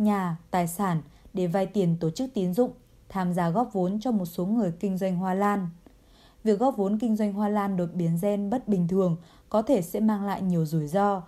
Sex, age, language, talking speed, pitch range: female, 20-39, Vietnamese, 230 wpm, 175-225 Hz